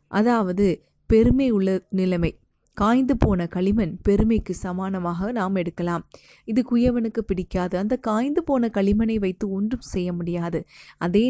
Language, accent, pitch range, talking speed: Tamil, native, 185-220 Hz, 115 wpm